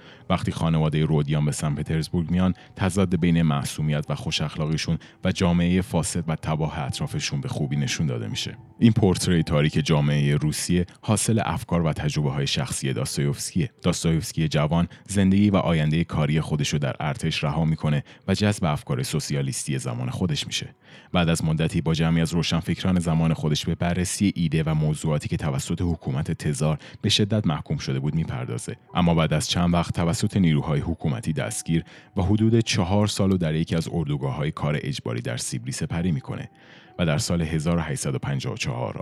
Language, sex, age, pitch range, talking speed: Persian, male, 30-49, 75-95 Hz, 160 wpm